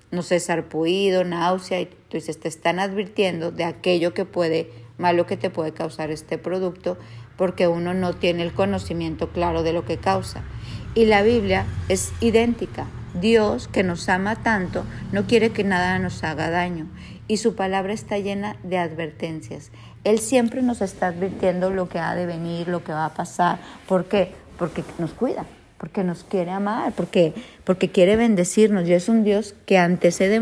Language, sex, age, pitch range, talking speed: Spanish, female, 50-69, 170-200 Hz, 175 wpm